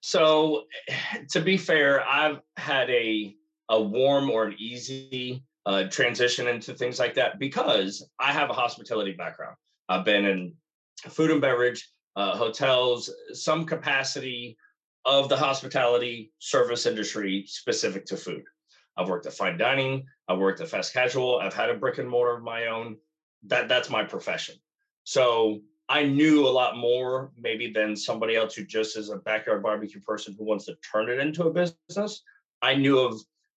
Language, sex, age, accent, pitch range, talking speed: English, male, 30-49, American, 105-145 Hz, 165 wpm